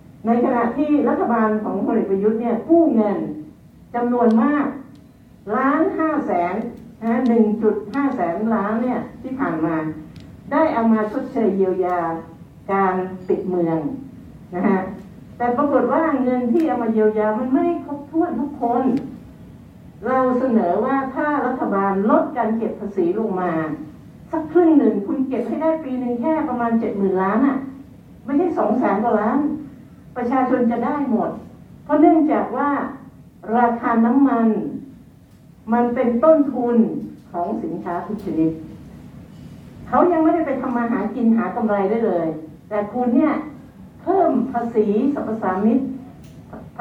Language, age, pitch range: Thai, 60-79, 210-275 Hz